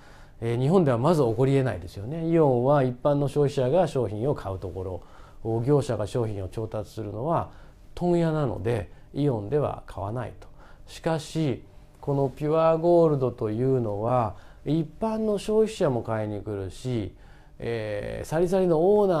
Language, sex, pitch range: Japanese, male, 110-170 Hz